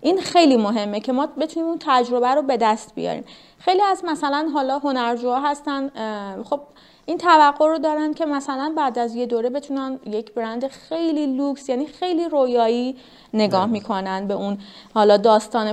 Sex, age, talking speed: female, 30-49, 165 wpm